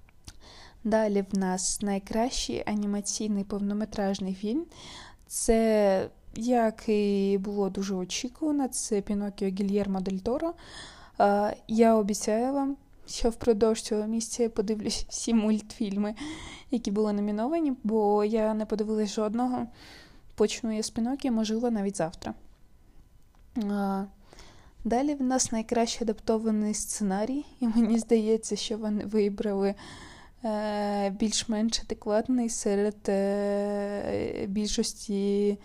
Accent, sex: native, female